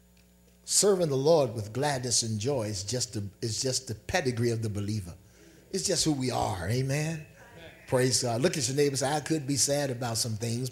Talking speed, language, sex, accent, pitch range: 185 wpm, English, male, American, 110-145 Hz